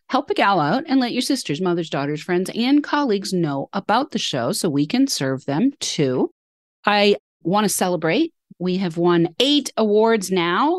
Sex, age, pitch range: female, 40-59, 165-210 Hz